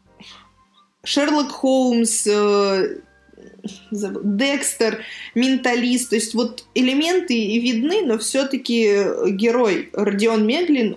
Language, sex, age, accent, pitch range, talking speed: Russian, female, 20-39, native, 200-250 Hz, 80 wpm